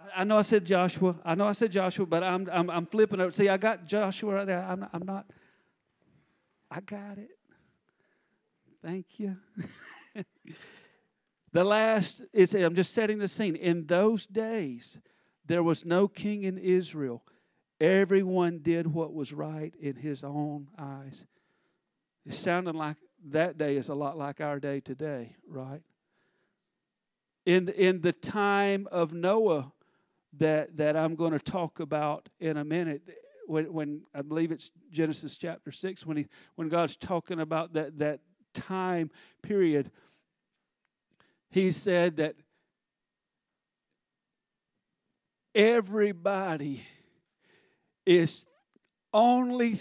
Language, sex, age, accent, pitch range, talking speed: English, male, 50-69, American, 155-195 Hz, 130 wpm